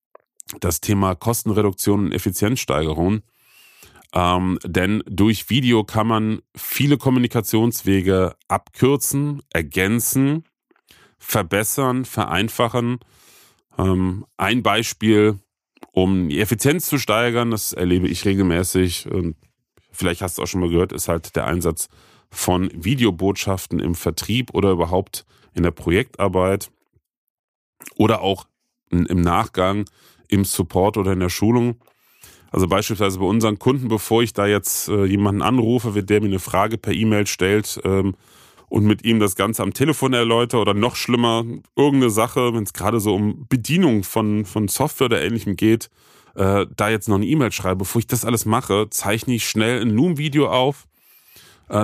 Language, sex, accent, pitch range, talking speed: German, male, German, 95-120 Hz, 145 wpm